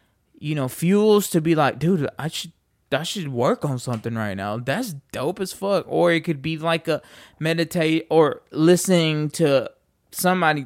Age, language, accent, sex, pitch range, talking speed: 20-39, English, American, male, 135-165 Hz, 175 wpm